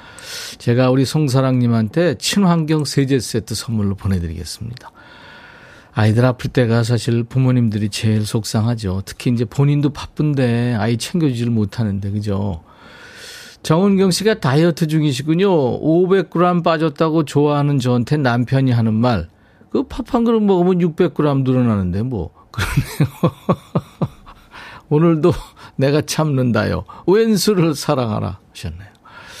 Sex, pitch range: male, 110-155 Hz